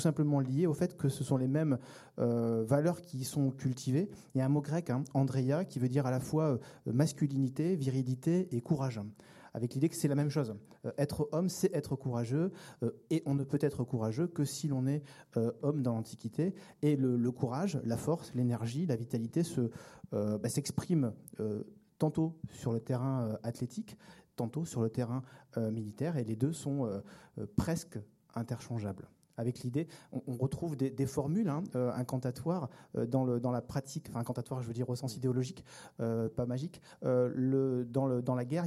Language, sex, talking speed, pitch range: French, male, 195 wpm, 125-150 Hz